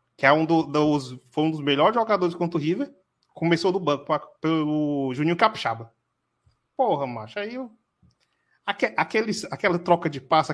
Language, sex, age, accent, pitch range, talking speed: Portuguese, male, 30-49, Brazilian, 145-215 Hz, 170 wpm